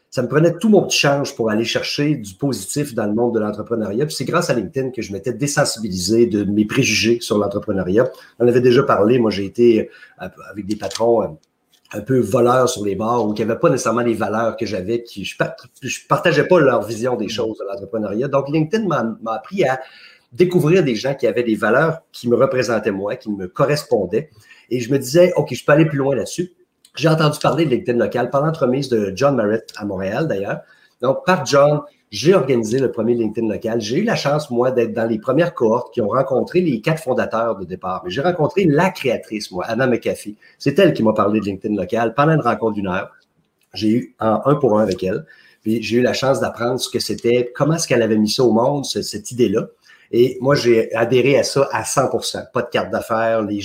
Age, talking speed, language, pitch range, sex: 50-69, 225 wpm, French, 110-145 Hz, male